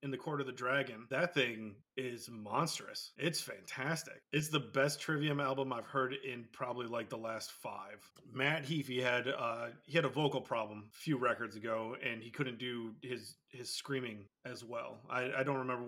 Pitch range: 120-135 Hz